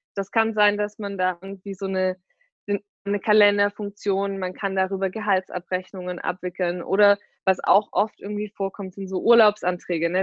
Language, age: German, 20-39